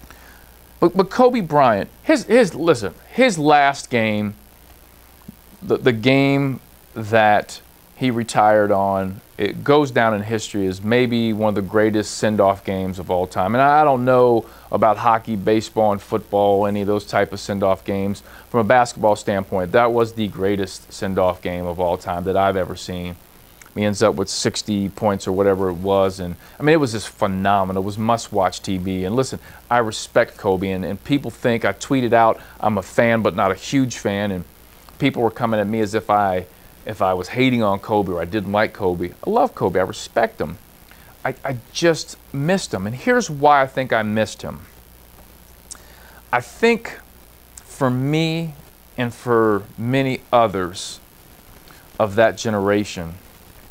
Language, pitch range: English, 95-120 Hz